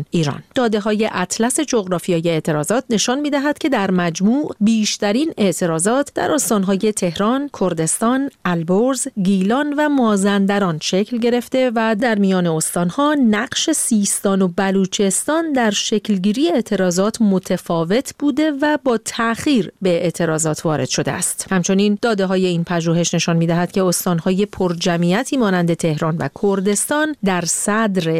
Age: 40-59